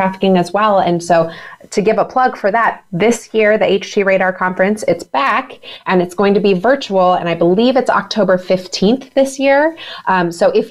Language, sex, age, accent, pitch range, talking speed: English, female, 20-39, American, 170-205 Hz, 200 wpm